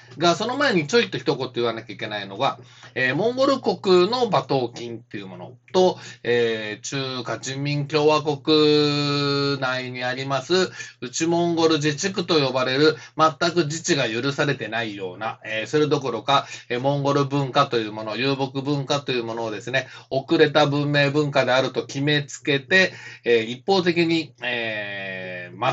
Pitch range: 120-155 Hz